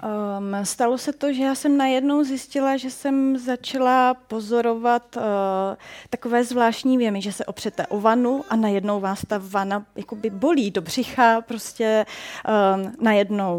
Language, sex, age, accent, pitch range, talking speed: Czech, female, 30-49, native, 205-245 Hz, 145 wpm